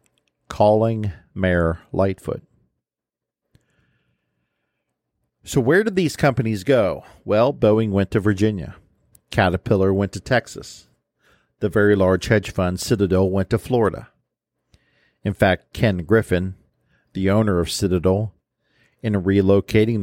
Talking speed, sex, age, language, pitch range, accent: 110 wpm, male, 50-69, English, 90-105 Hz, American